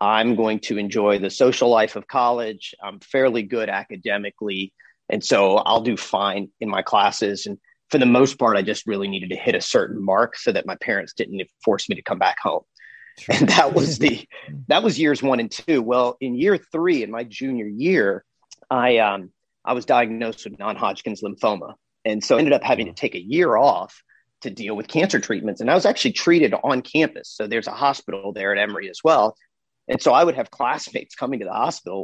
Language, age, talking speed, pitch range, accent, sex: English, 40-59, 215 wpm, 105-140 Hz, American, male